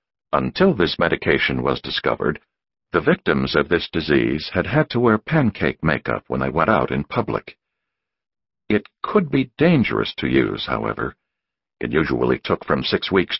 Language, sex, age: English, male, 60-79